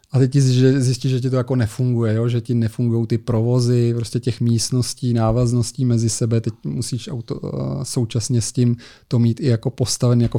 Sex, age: male, 30-49